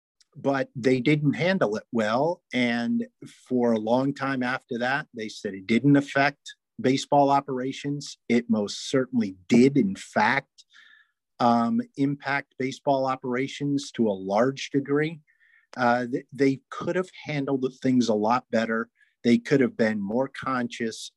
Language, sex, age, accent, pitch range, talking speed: English, male, 50-69, American, 120-145 Hz, 140 wpm